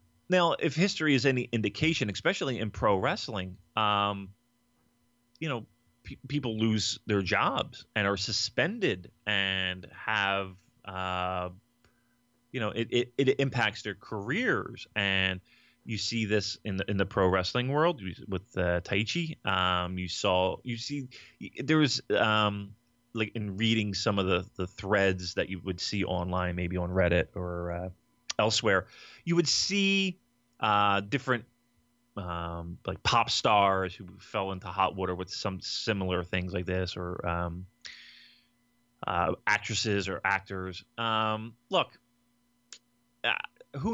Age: 30-49